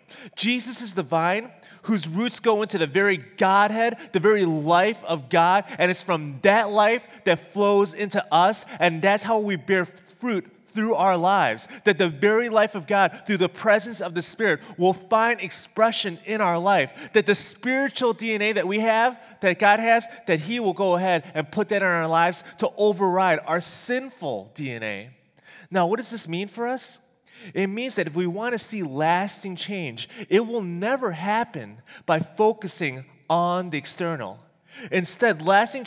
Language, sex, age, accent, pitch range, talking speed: English, male, 30-49, American, 180-230 Hz, 175 wpm